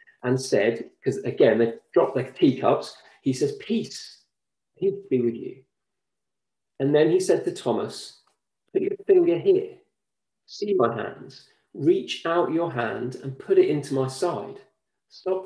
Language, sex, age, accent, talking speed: English, male, 40-59, British, 150 wpm